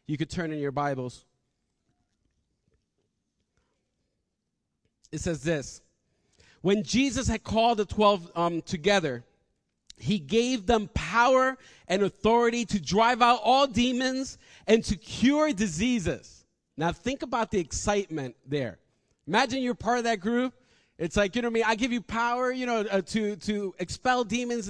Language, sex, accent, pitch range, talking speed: English, male, American, 185-245 Hz, 150 wpm